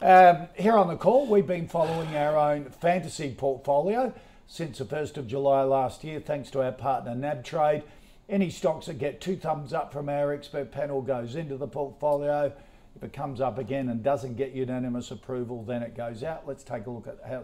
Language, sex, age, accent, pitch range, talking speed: English, male, 50-69, Australian, 130-160 Hz, 205 wpm